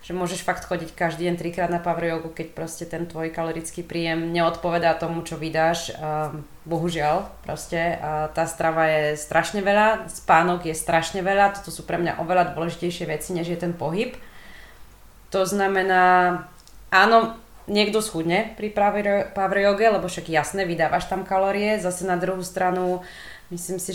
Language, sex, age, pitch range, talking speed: Slovak, female, 20-39, 165-200 Hz, 150 wpm